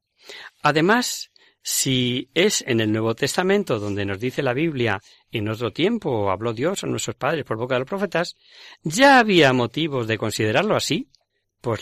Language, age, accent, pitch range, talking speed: Spanish, 40-59, Spanish, 120-170 Hz, 160 wpm